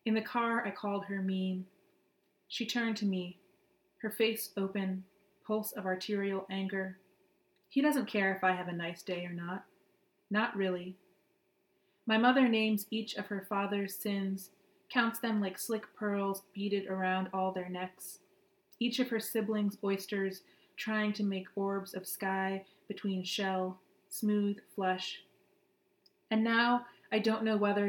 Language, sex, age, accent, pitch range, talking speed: English, female, 30-49, American, 190-210 Hz, 150 wpm